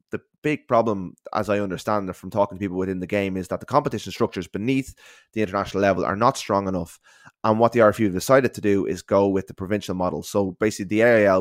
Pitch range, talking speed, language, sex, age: 95-110 Hz, 235 wpm, English, male, 20-39